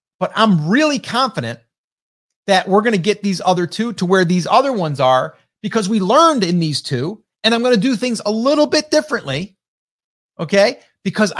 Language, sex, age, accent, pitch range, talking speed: English, male, 30-49, American, 170-225 Hz, 190 wpm